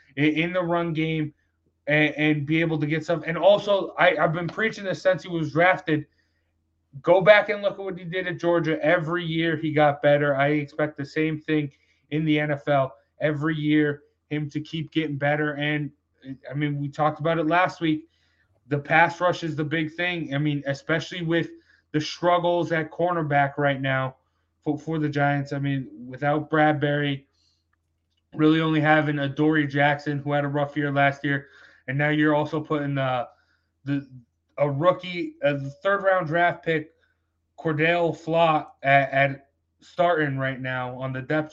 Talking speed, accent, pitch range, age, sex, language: 180 wpm, American, 140-160 Hz, 20-39, male, English